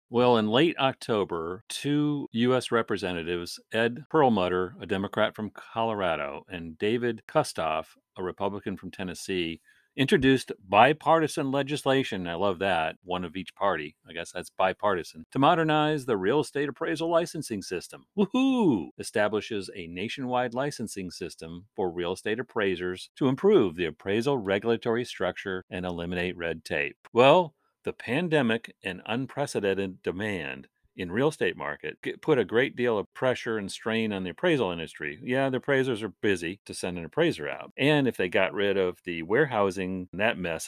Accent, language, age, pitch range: American, English, 40-59, 90-135 Hz